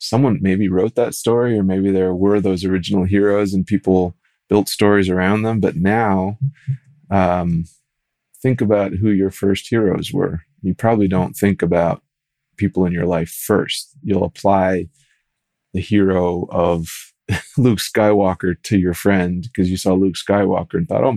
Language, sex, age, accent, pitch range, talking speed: English, male, 30-49, American, 90-105 Hz, 160 wpm